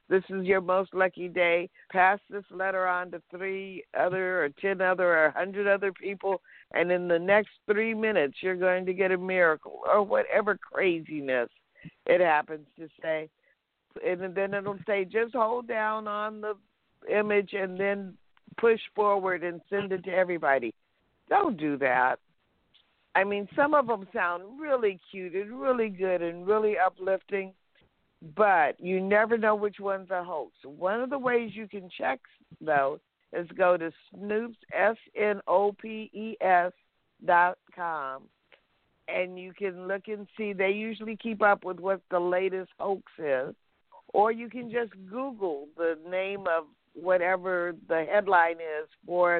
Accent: American